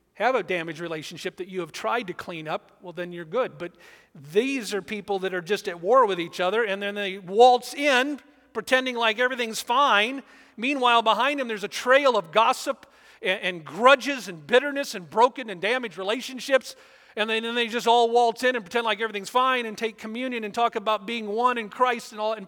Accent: American